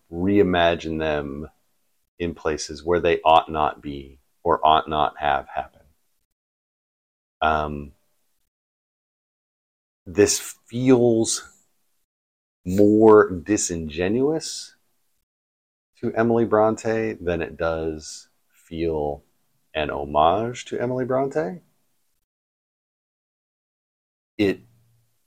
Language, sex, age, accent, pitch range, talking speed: English, male, 40-59, American, 75-105 Hz, 75 wpm